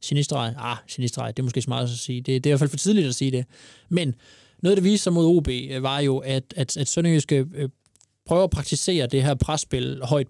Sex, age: male, 20-39